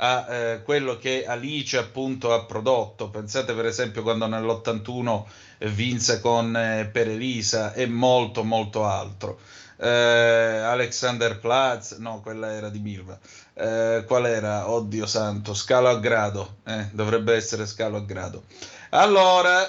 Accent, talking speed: native, 130 wpm